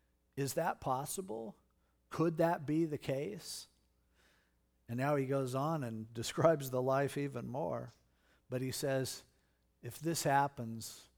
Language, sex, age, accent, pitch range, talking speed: English, male, 50-69, American, 125-175 Hz, 135 wpm